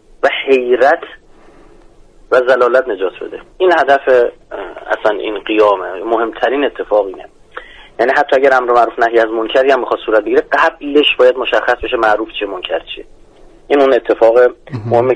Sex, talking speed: male, 155 wpm